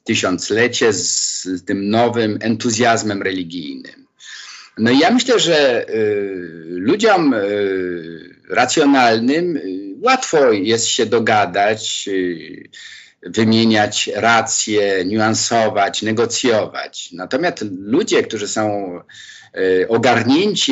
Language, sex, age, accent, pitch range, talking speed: Polish, male, 50-69, native, 105-170 Hz, 90 wpm